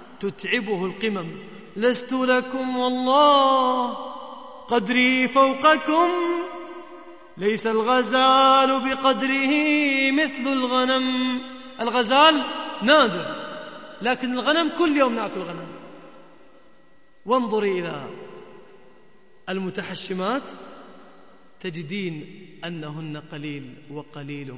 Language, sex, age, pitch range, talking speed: Arabic, male, 30-49, 185-260 Hz, 65 wpm